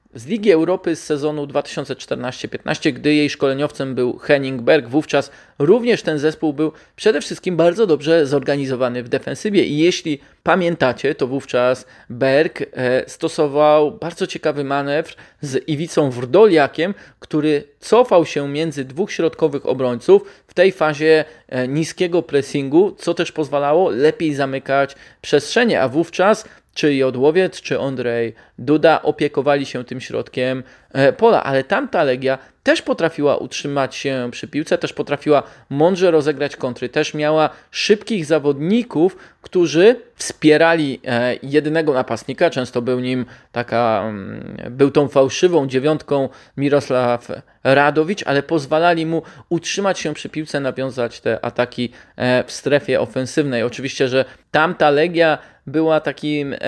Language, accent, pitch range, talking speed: Polish, native, 135-165 Hz, 125 wpm